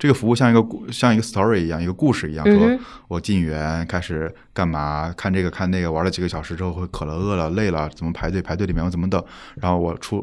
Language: Chinese